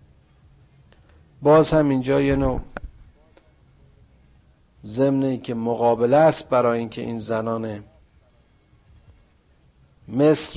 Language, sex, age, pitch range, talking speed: Persian, male, 50-69, 95-125 Hz, 85 wpm